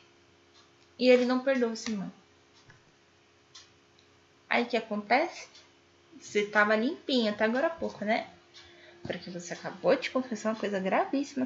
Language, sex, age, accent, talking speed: Portuguese, female, 10-29, Brazilian, 145 wpm